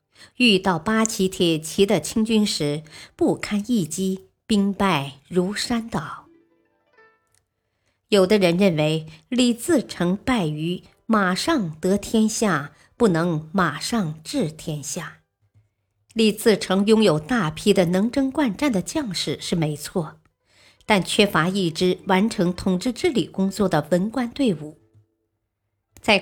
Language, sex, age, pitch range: Chinese, male, 50-69, 155-215 Hz